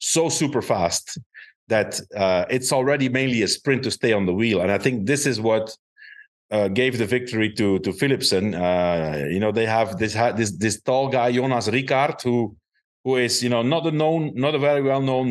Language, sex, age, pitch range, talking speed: English, male, 50-69, 100-130 Hz, 210 wpm